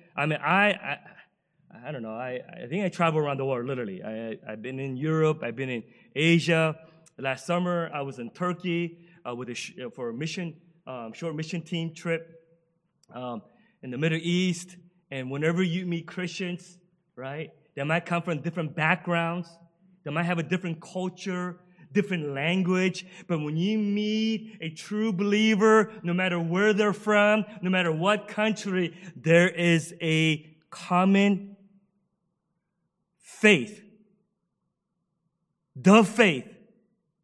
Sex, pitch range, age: male, 165-205 Hz, 30-49